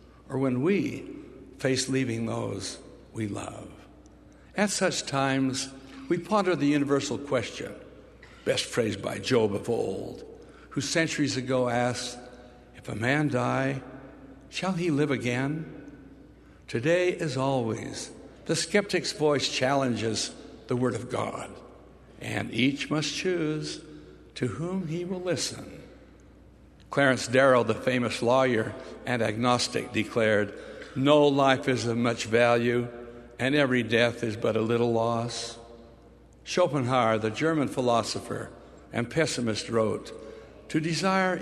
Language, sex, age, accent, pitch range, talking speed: English, male, 60-79, American, 120-155 Hz, 125 wpm